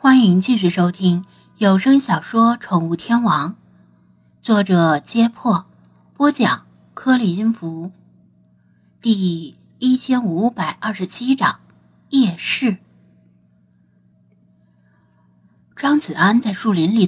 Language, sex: Chinese, female